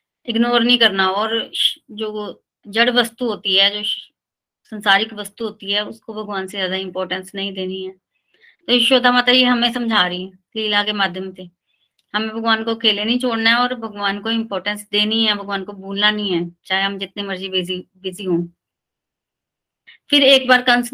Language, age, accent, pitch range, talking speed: Hindi, 20-39, native, 190-225 Hz, 180 wpm